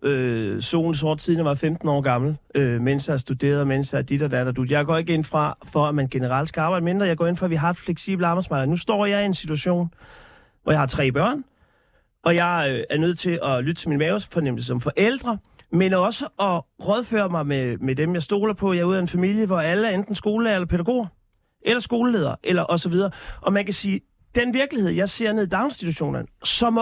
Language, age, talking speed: Danish, 30-49, 235 wpm